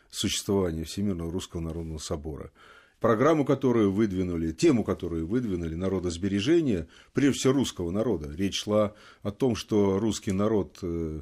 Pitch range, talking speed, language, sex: 90-115 Hz, 125 wpm, Russian, male